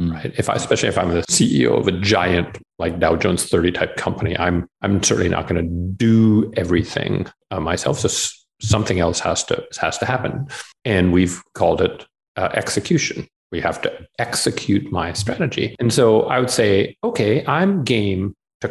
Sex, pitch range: male, 85-110 Hz